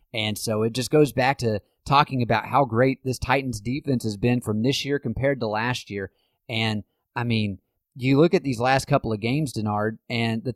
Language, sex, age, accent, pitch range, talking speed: English, male, 30-49, American, 125-155 Hz, 210 wpm